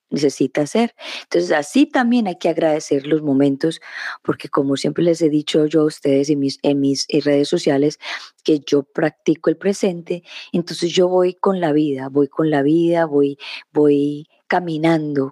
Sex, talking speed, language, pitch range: female, 170 wpm, Spanish, 145-175 Hz